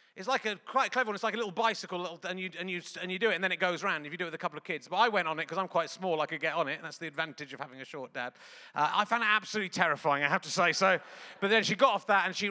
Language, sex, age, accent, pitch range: English, male, 30-49, British, 170-225 Hz